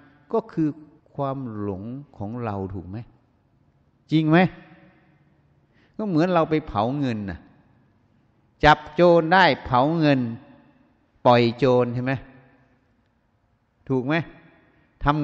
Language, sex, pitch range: Thai, male, 110-145 Hz